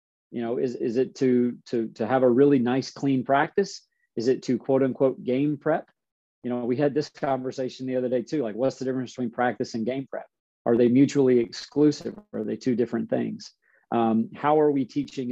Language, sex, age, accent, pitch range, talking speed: English, male, 40-59, American, 115-135 Hz, 215 wpm